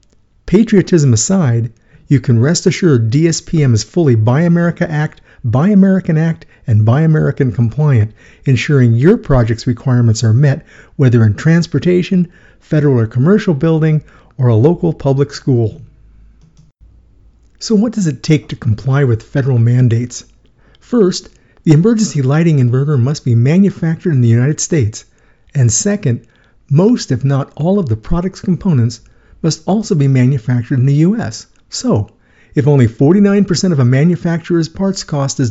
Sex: male